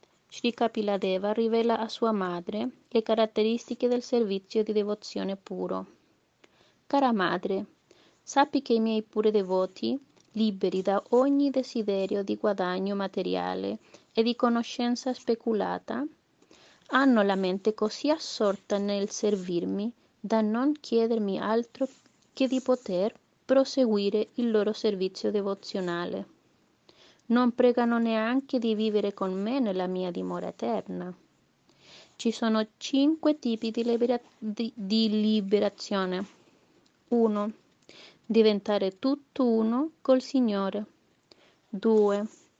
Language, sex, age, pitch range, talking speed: Italian, female, 30-49, 200-240 Hz, 110 wpm